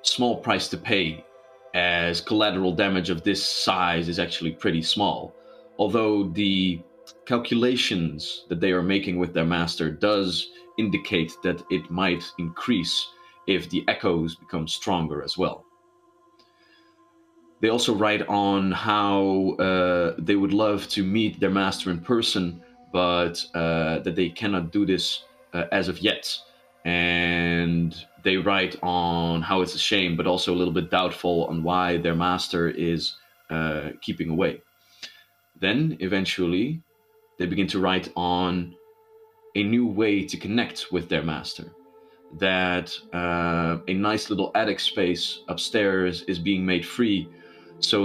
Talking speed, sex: 140 wpm, male